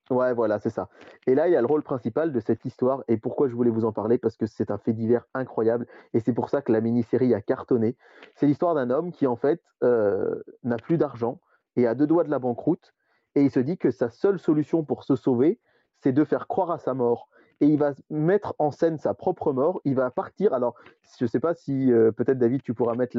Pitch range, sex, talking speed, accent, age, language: 120-175 Hz, male, 250 wpm, French, 30-49, French